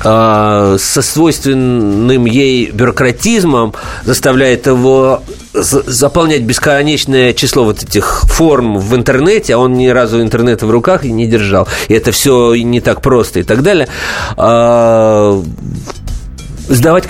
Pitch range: 115-150 Hz